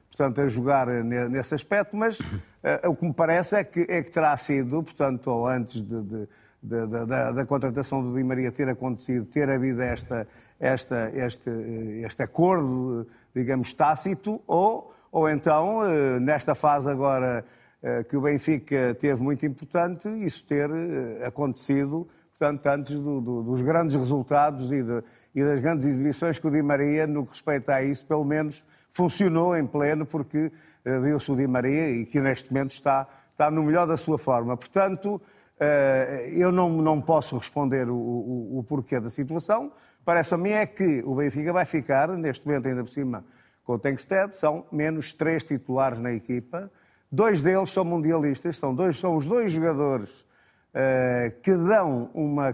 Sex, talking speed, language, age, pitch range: male, 155 wpm, Portuguese, 50-69, 130-165 Hz